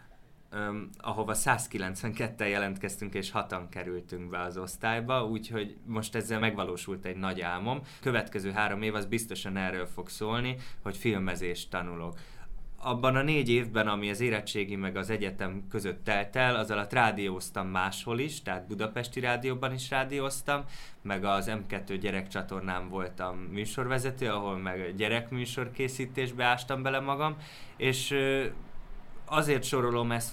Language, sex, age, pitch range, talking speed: Hungarian, male, 20-39, 95-125 Hz, 130 wpm